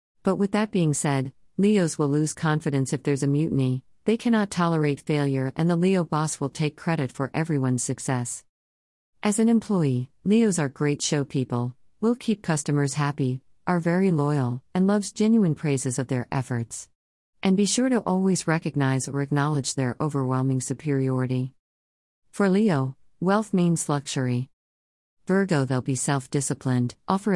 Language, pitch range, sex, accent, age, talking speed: English, 130-175 Hz, female, American, 50-69, 155 wpm